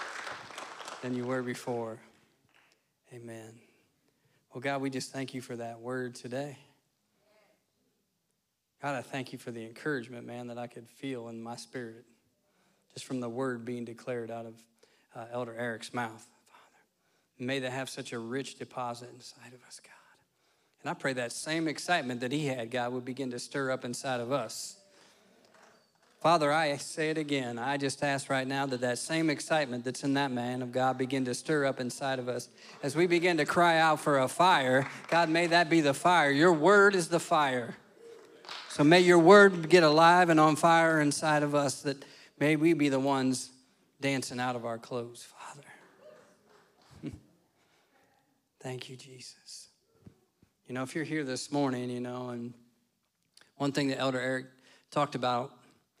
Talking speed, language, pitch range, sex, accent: 175 wpm, English, 125-145 Hz, male, American